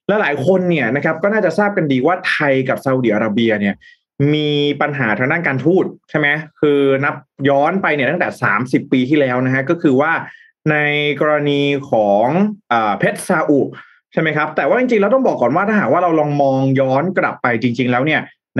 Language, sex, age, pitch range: Thai, male, 20-39, 135-185 Hz